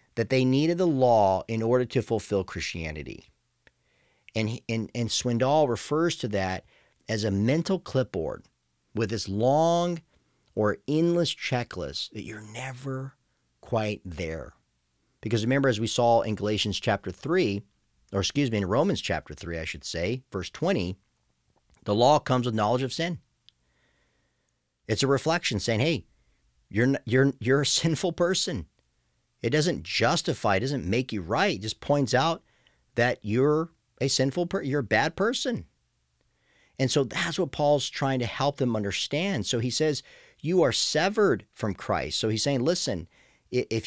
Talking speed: 155 wpm